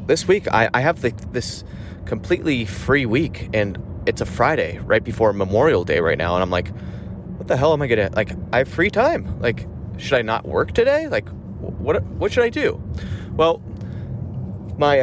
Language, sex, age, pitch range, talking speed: English, male, 30-49, 95-110 Hz, 190 wpm